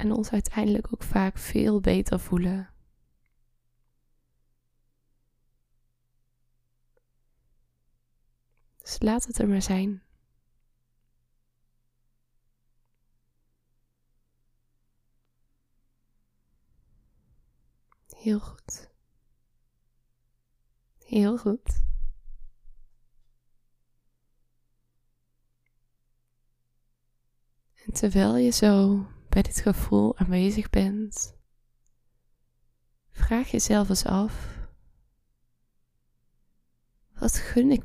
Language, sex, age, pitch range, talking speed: Dutch, female, 20-39, 120-180 Hz, 55 wpm